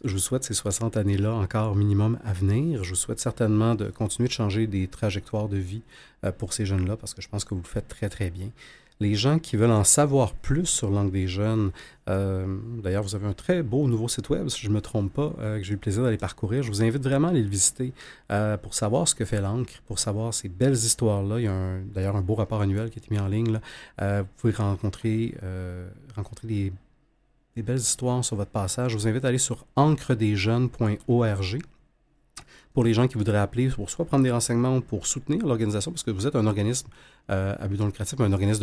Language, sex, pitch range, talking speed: French, male, 100-125 Hz, 240 wpm